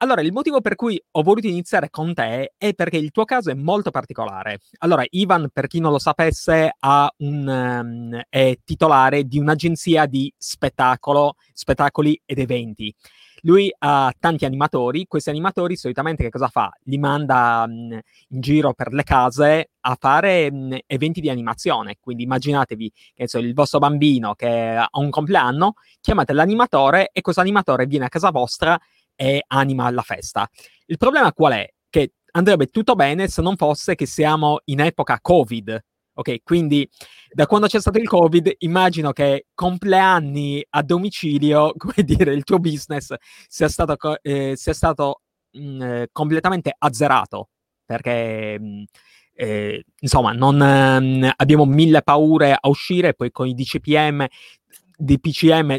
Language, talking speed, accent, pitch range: Italian, 155 wpm, native, 130-170 Hz